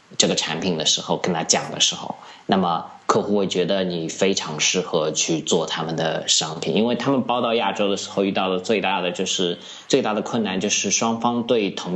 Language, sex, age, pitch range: Chinese, male, 20-39, 85-105 Hz